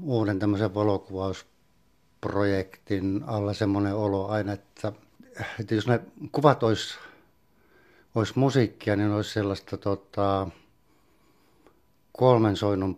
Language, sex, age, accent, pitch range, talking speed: Finnish, male, 60-79, native, 100-120 Hz, 90 wpm